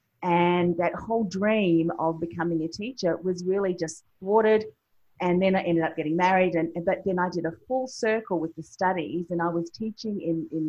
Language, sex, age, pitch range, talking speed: English, female, 30-49, 165-195 Hz, 200 wpm